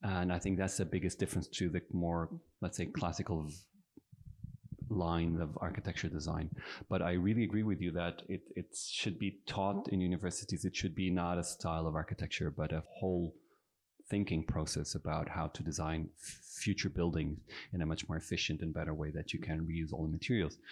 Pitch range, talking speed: 85-95 Hz, 190 wpm